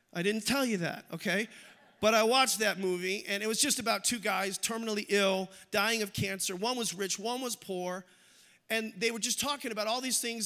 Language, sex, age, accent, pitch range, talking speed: English, male, 40-59, American, 200-250 Hz, 220 wpm